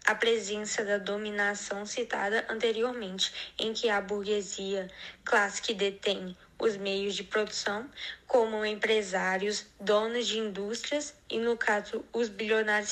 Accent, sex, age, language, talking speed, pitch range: Brazilian, female, 10-29, Portuguese, 125 wpm, 200-235 Hz